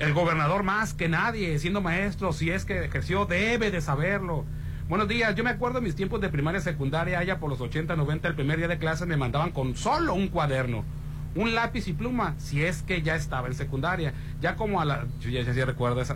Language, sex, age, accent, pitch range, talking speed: Spanish, male, 40-59, Mexican, 135-175 Hz, 230 wpm